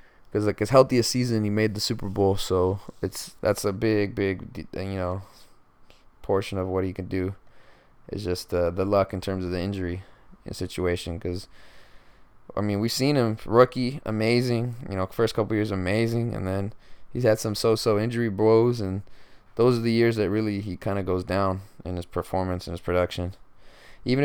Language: English